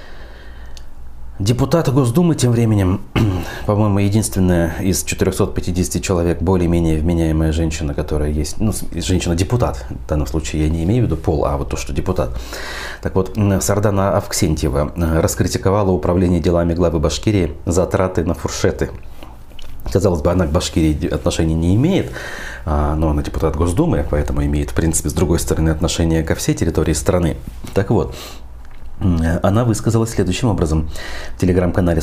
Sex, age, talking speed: male, 30-49, 140 wpm